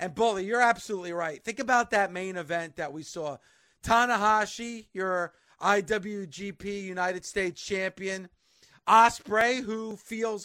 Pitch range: 170-210 Hz